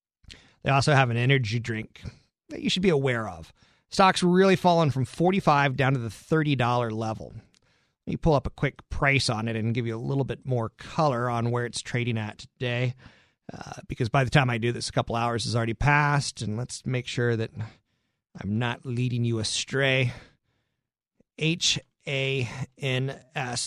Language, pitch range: English, 120-160 Hz